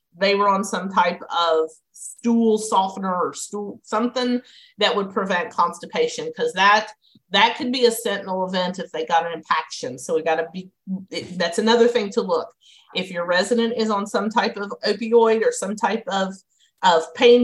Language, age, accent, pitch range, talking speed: English, 40-59, American, 180-235 Hz, 185 wpm